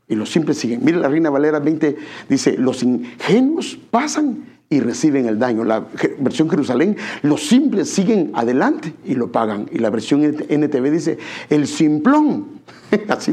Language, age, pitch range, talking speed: English, 60-79, 140-225 Hz, 160 wpm